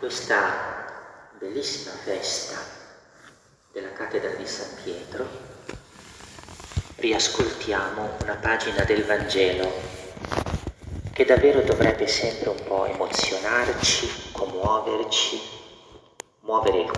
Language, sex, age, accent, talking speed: Italian, male, 40-59, native, 80 wpm